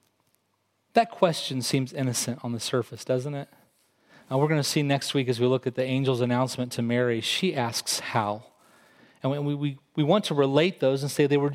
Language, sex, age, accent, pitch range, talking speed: English, male, 30-49, American, 125-155 Hz, 205 wpm